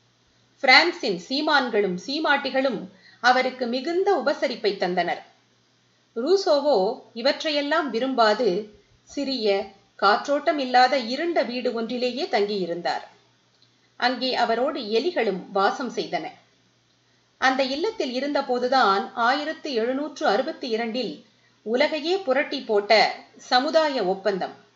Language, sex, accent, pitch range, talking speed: Tamil, female, native, 210-290 Hz, 55 wpm